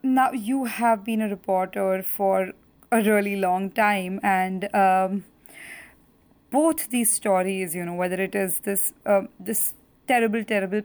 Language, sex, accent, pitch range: English, female, Indian, 195-230 Hz